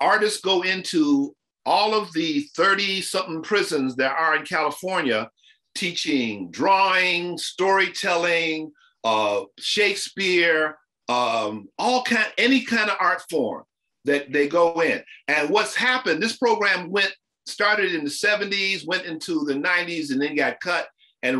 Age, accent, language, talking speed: 50-69, American, English, 135 wpm